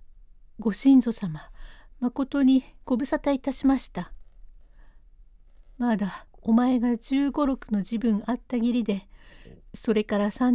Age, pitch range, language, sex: 60-79, 210-255 Hz, Japanese, female